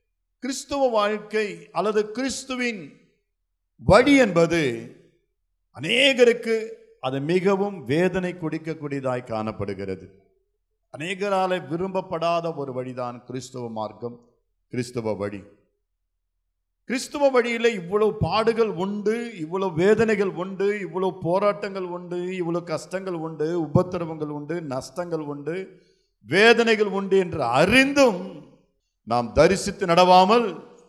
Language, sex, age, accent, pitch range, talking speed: Tamil, male, 50-69, native, 130-205 Hz, 85 wpm